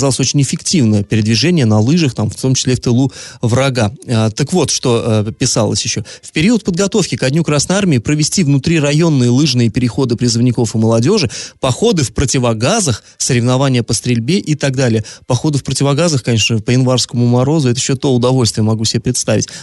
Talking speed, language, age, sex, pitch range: 170 wpm, Russian, 20-39, male, 115-145 Hz